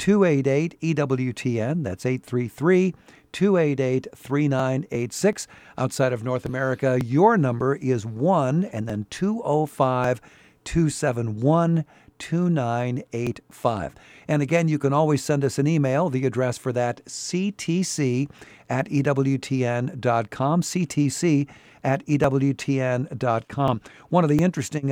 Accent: American